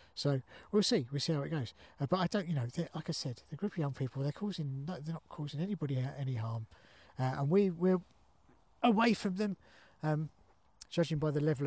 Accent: British